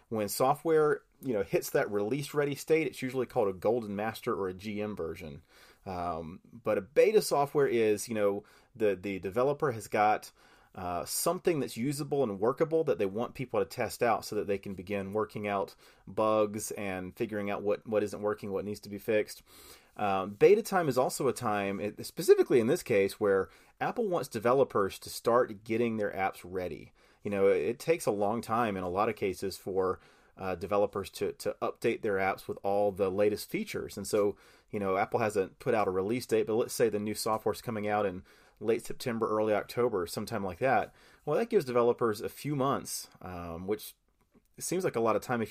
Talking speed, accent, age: 205 wpm, American, 30-49